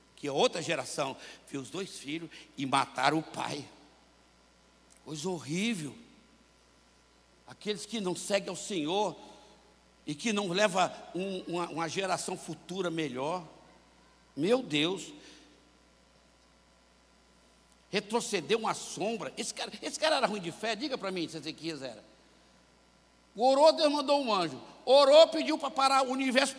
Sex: male